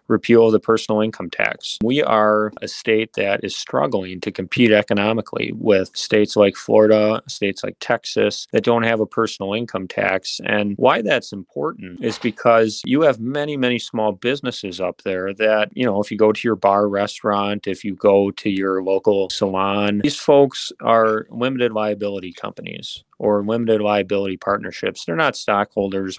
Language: English